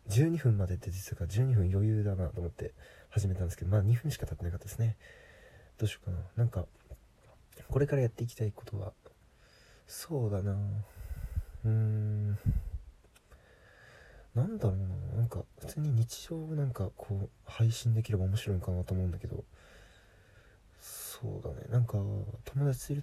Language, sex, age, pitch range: Japanese, male, 20-39, 95-115 Hz